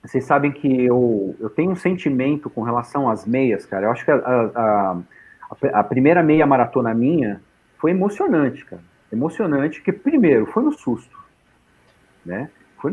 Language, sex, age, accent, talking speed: Portuguese, male, 40-59, Brazilian, 165 wpm